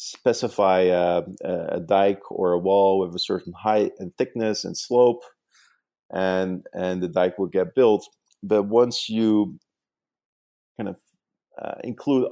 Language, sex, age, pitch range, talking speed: English, male, 40-59, 90-105 Hz, 140 wpm